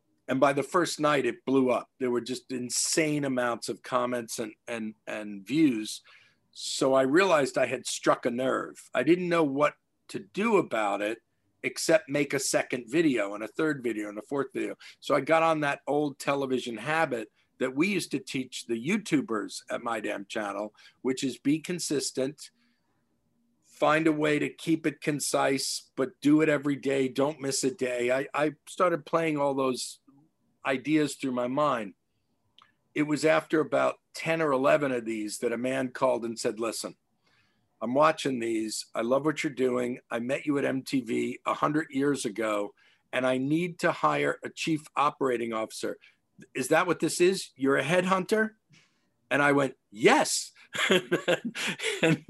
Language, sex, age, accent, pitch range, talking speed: English, male, 50-69, American, 125-160 Hz, 175 wpm